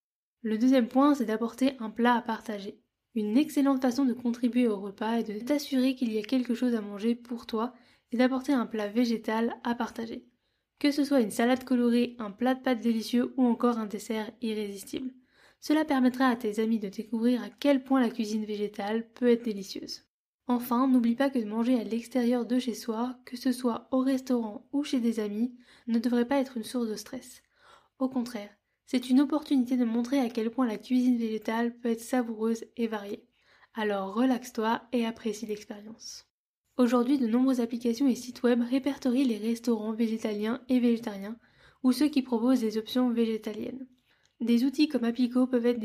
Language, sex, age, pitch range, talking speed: French, female, 10-29, 225-255 Hz, 190 wpm